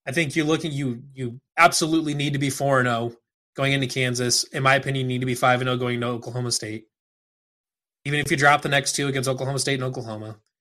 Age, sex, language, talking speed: 20-39, male, English, 240 wpm